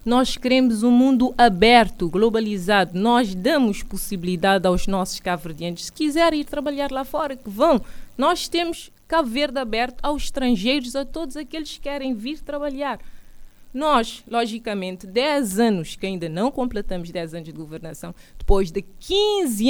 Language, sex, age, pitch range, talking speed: Portuguese, female, 20-39, 200-285 Hz, 150 wpm